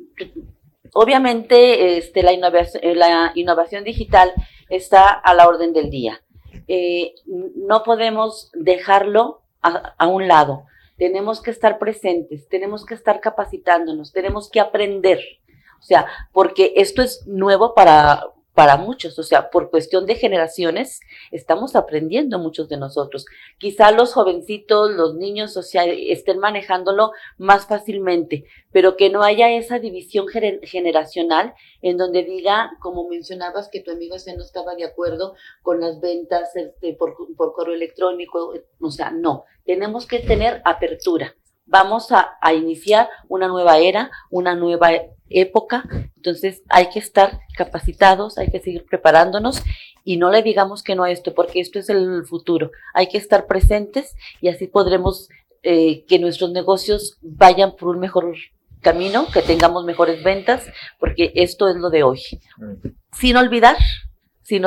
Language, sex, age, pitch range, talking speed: Spanish, female, 40-59, 170-210 Hz, 145 wpm